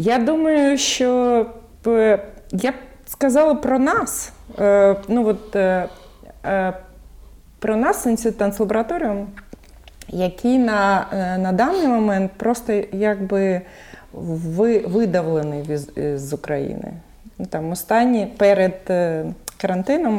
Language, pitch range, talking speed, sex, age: Ukrainian, 175-220 Hz, 100 wpm, female, 30-49